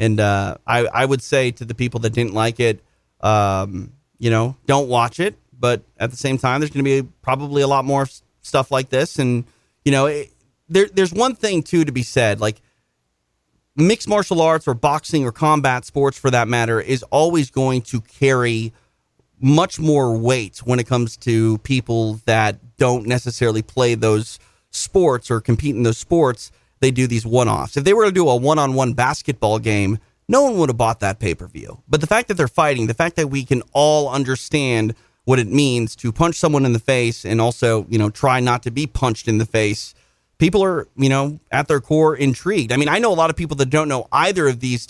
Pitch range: 115-145 Hz